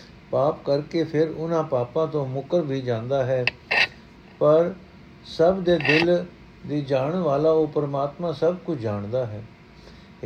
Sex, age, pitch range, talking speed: male, 60-79, 135-165 Hz, 140 wpm